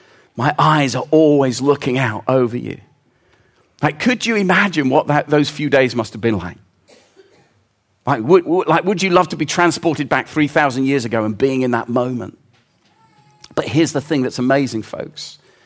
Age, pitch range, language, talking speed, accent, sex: 40-59, 135-195 Hz, English, 180 wpm, British, male